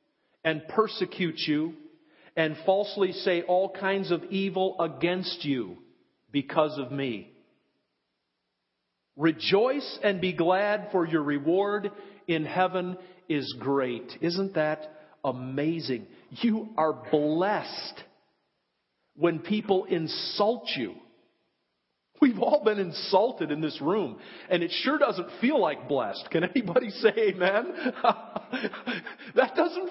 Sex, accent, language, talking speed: male, American, English, 110 wpm